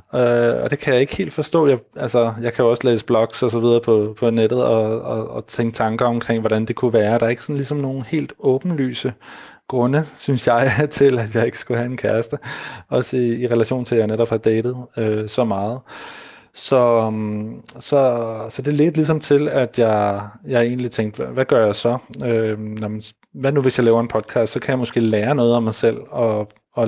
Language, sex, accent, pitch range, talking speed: Danish, male, native, 115-130 Hz, 225 wpm